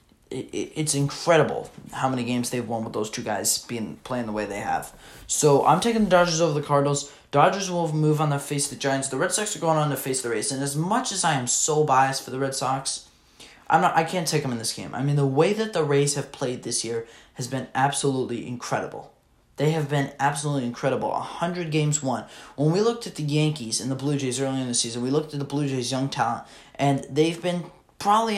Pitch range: 125-150 Hz